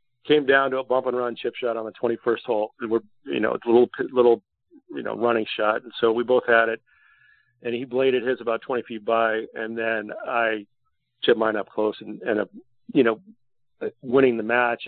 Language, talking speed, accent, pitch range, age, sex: English, 200 wpm, American, 110-125 Hz, 40-59, male